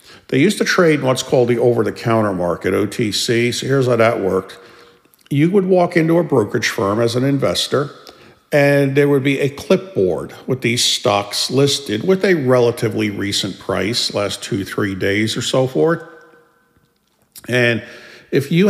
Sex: male